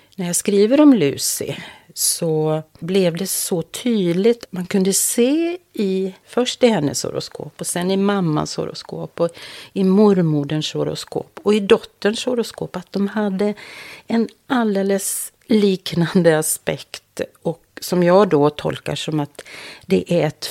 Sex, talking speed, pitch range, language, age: female, 140 wpm, 155-210 Hz, Swedish, 40-59